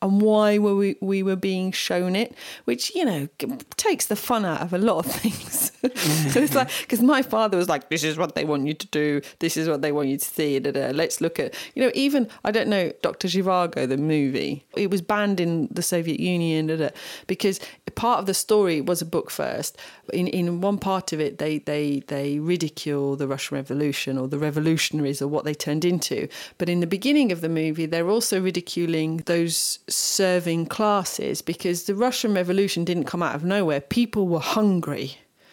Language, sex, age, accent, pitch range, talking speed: English, female, 40-59, British, 150-190 Hz, 210 wpm